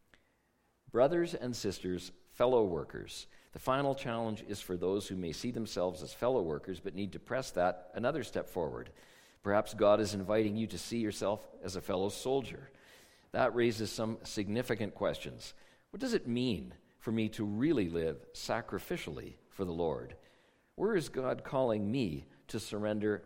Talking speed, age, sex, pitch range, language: 165 wpm, 50-69, male, 95-125 Hz, English